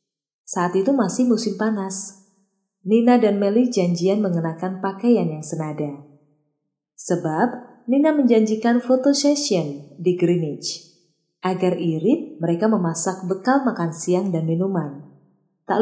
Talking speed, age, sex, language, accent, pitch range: 115 wpm, 20-39, female, Indonesian, native, 165-240 Hz